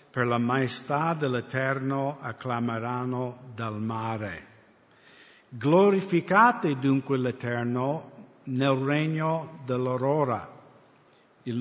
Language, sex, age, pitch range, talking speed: English, male, 50-69, 125-160 Hz, 70 wpm